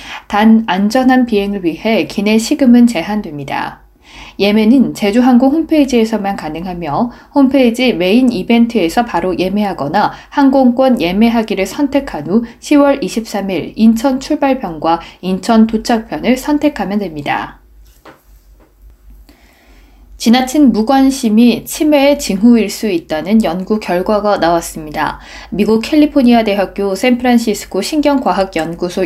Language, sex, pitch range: Korean, female, 190-255 Hz